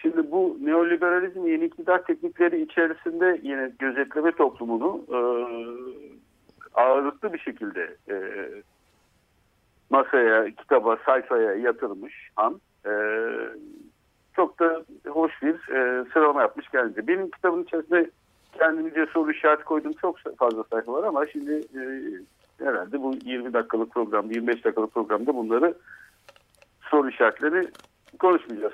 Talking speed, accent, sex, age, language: 115 wpm, native, male, 60-79, Turkish